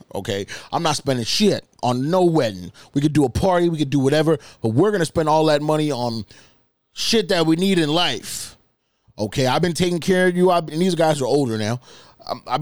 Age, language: 20-39, English